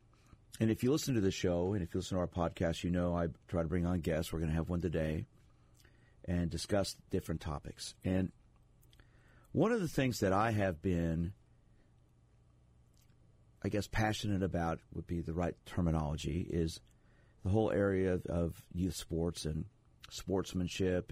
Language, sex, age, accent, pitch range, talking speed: English, male, 50-69, American, 80-105 Hz, 170 wpm